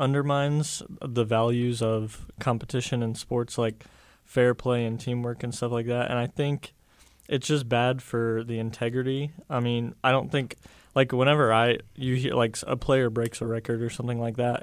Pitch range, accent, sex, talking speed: 115-130 Hz, American, male, 185 wpm